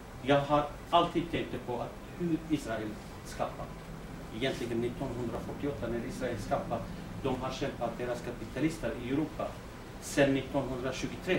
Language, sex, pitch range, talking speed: Swedish, male, 110-130 Hz, 120 wpm